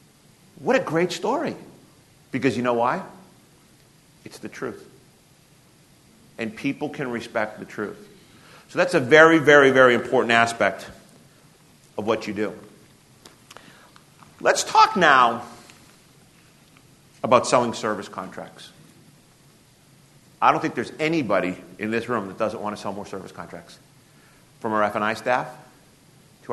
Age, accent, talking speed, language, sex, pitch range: 50-69, American, 130 wpm, English, male, 120-195 Hz